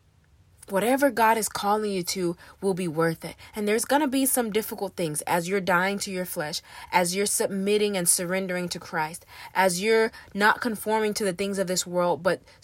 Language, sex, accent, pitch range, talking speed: English, female, American, 175-215 Hz, 200 wpm